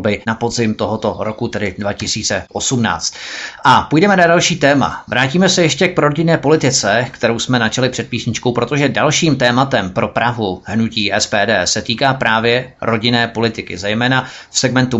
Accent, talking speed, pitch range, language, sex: native, 145 wpm, 105-125 Hz, Czech, male